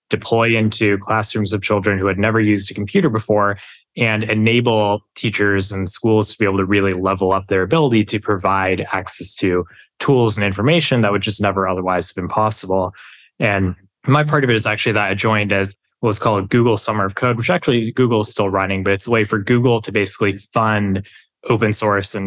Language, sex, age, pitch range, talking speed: English, male, 20-39, 95-110 Hz, 210 wpm